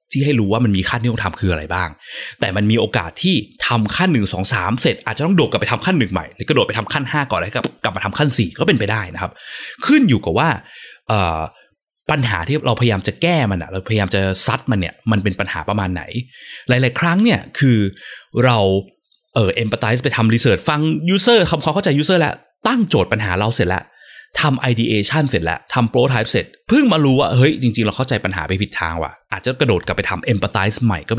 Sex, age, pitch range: male, 20-39, 100-130 Hz